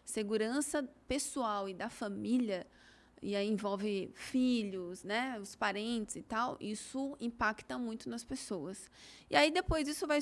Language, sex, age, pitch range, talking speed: Portuguese, female, 20-39, 210-260 Hz, 140 wpm